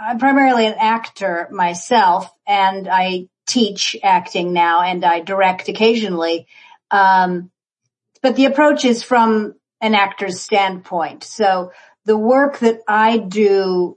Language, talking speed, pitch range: English, 125 wpm, 180-215 Hz